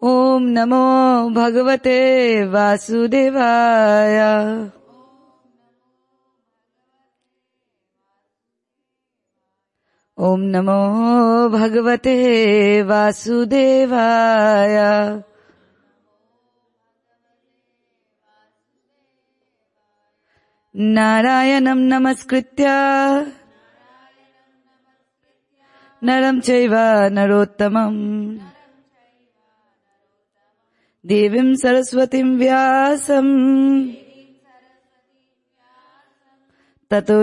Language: English